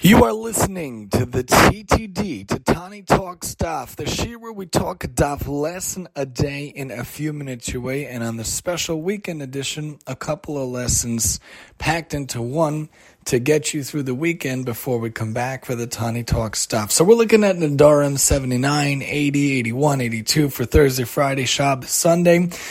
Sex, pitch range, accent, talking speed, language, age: male, 135-165 Hz, American, 175 wpm, English, 30-49